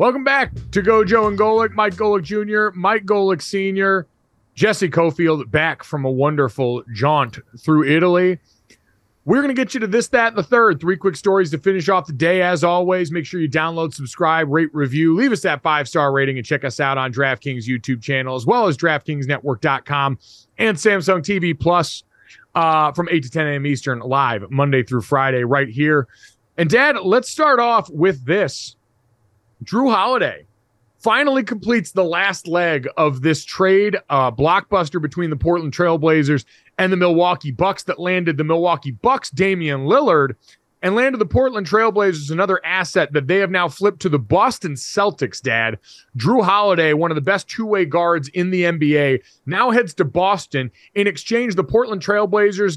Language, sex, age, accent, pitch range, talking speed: English, male, 30-49, American, 145-200 Hz, 175 wpm